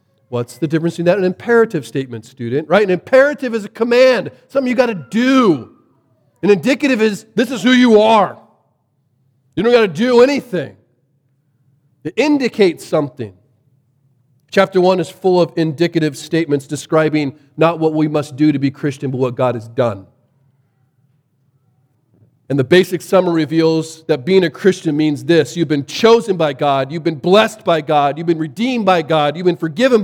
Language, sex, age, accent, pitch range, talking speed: English, male, 40-59, American, 135-210 Hz, 170 wpm